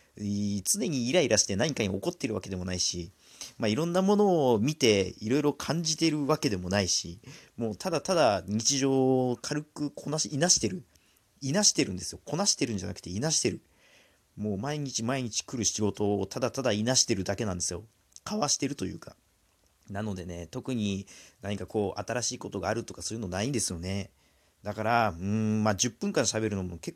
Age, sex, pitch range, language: 40-59, male, 95-145 Hz, Japanese